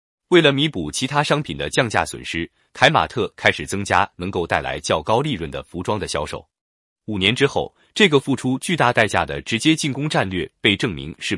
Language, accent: Chinese, native